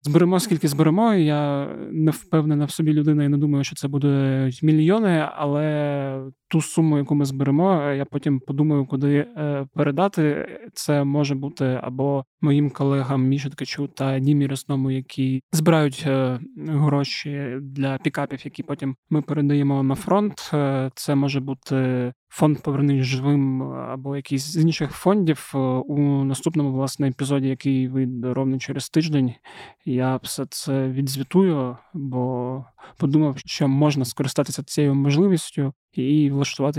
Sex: male